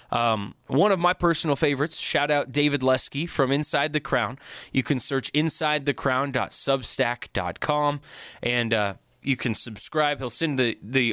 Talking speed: 145 wpm